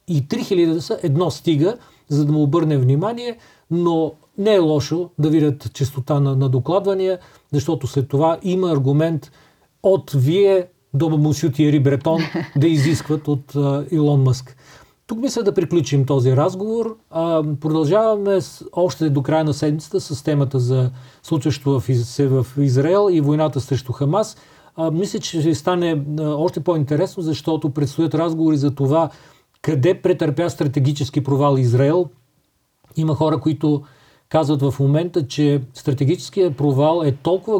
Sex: male